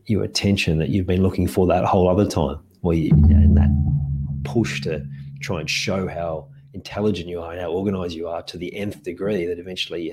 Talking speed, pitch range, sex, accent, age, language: 205 wpm, 80-100 Hz, male, Australian, 30-49, English